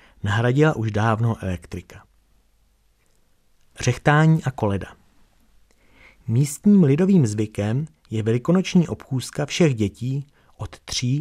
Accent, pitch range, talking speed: native, 105-145 Hz, 90 wpm